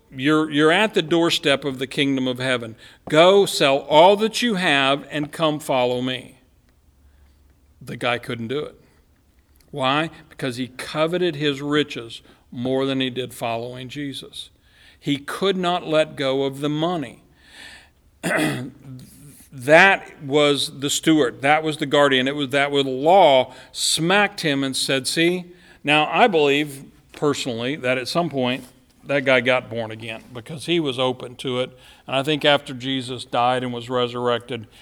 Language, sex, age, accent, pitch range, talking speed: English, male, 50-69, American, 125-155 Hz, 155 wpm